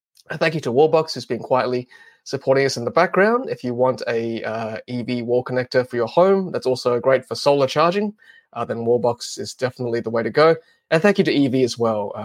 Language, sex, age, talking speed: English, male, 20-39, 220 wpm